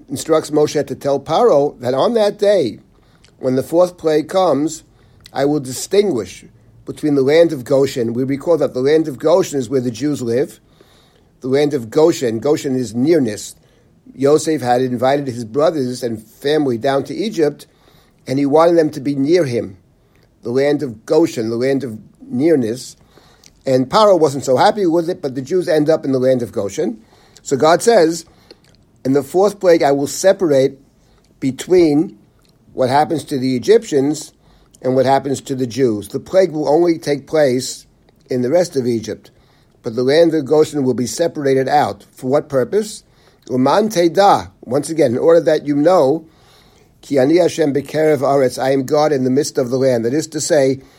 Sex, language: male, English